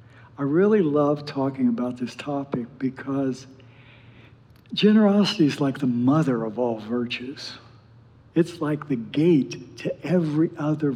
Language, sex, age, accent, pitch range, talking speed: English, male, 60-79, American, 120-155 Hz, 125 wpm